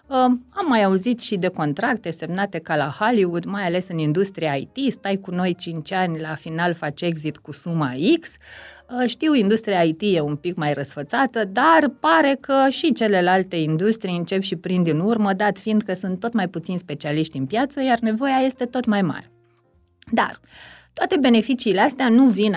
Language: Romanian